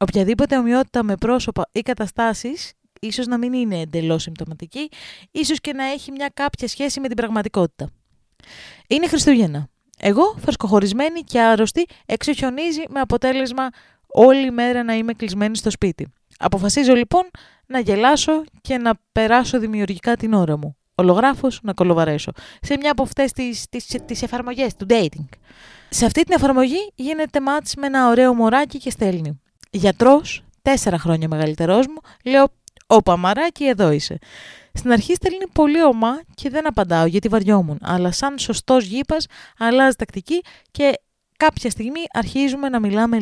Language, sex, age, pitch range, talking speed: Greek, female, 20-39, 200-275 Hz, 145 wpm